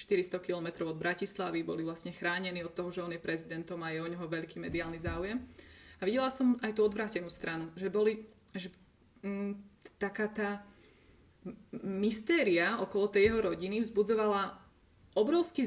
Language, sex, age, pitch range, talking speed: Czech, female, 20-39, 180-215 Hz, 150 wpm